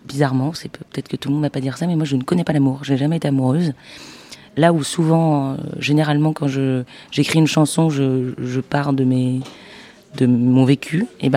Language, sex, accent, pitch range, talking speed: French, female, French, 135-160 Hz, 220 wpm